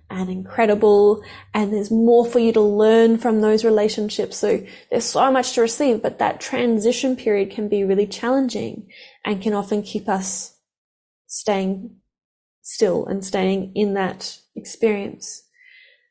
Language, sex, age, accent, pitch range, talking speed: English, female, 10-29, Australian, 205-245 Hz, 140 wpm